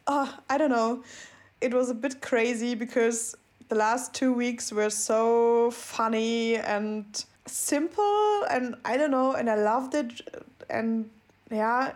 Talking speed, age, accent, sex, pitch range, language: 145 wpm, 20-39, German, female, 225-300 Hz, English